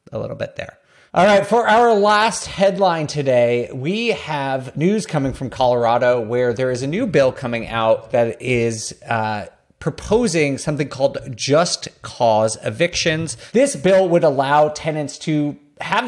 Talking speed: 155 wpm